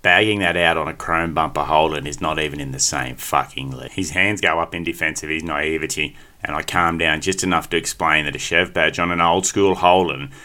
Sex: male